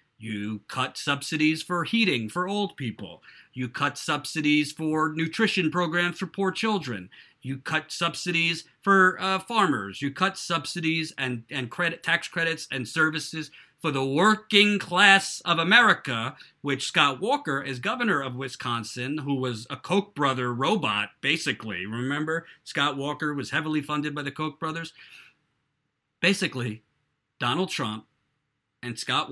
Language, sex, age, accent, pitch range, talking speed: English, male, 50-69, American, 130-170 Hz, 140 wpm